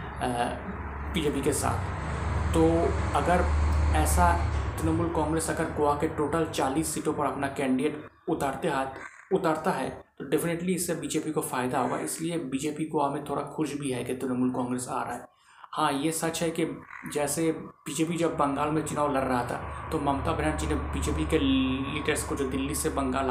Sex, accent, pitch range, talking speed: male, native, 130-160 Hz, 175 wpm